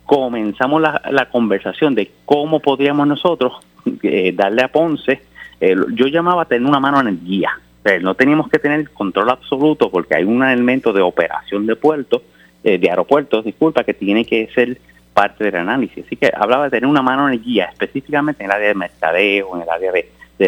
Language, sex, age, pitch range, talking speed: Spanish, male, 30-49, 95-140 Hz, 200 wpm